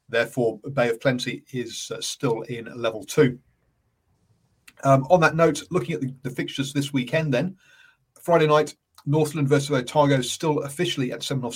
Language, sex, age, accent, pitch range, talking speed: English, male, 40-59, British, 115-145 Hz, 160 wpm